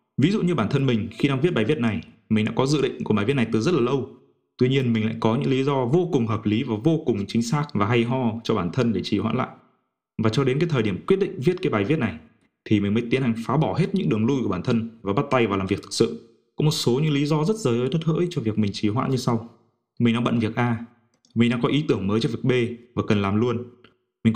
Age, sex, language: 20-39, male, Vietnamese